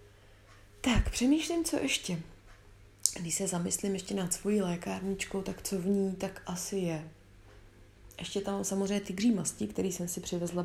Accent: native